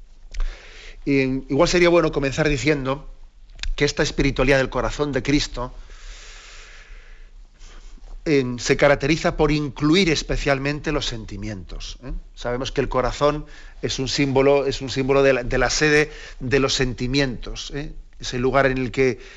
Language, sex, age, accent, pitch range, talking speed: Spanish, male, 40-59, Spanish, 125-150 Hz, 145 wpm